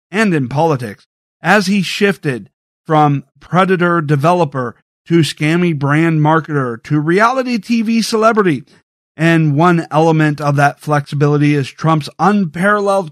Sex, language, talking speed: male, English, 120 wpm